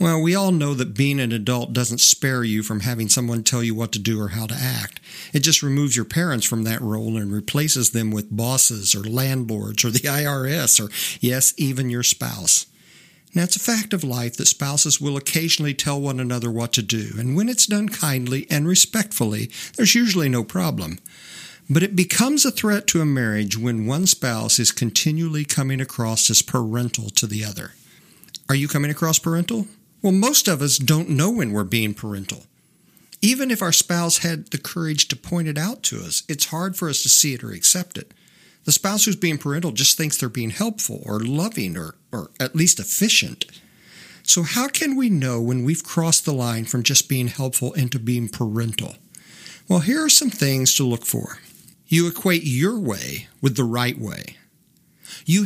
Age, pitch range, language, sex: 50-69, 120-175 Hz, English, male